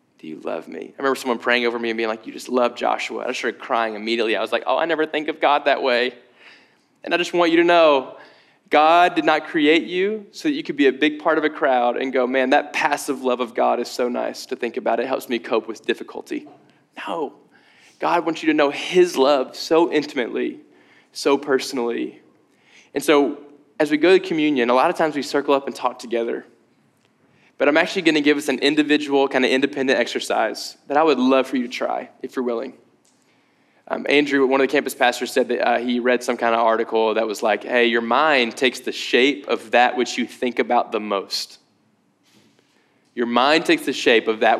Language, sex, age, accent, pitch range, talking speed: English, male, 10-29, American, 120-160 Hz, 225 wpm